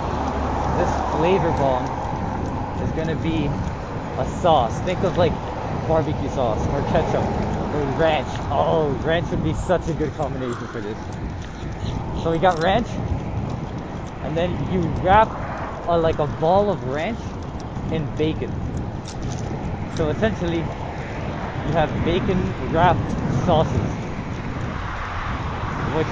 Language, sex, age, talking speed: English, male, 20-39, 115 wpm